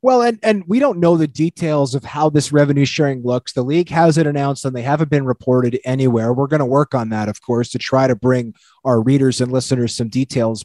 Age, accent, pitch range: 30-49, American, 135-175 Hz